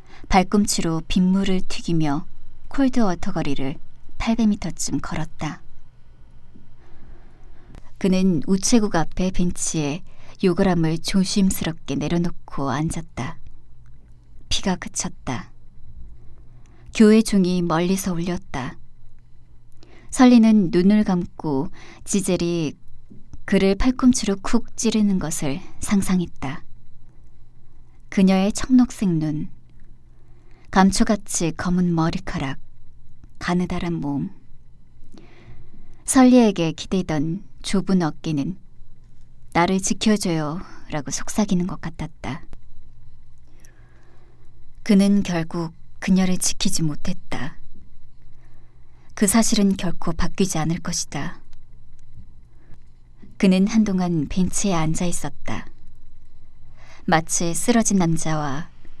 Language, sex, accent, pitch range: Korean, male, native, 130-195 Hz